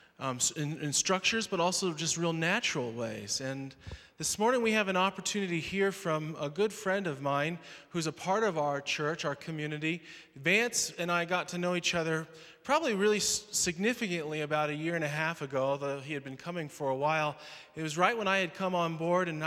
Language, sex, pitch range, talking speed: English, male, 145-175 Hz, 210 wpm